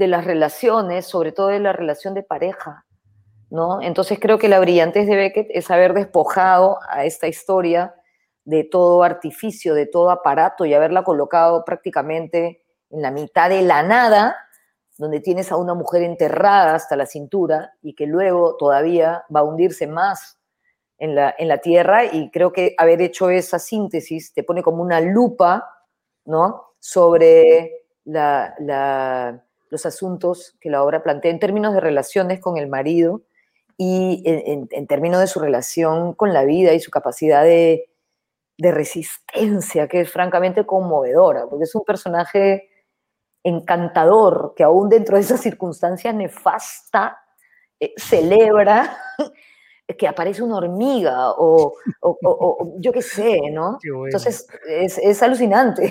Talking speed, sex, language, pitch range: 150 wpm, female, Spanish, 160-205 Hz